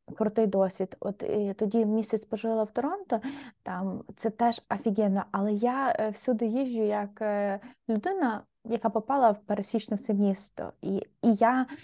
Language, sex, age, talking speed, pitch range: Ukrainian, female, 20-39, 150 wpm, 200-235 Hz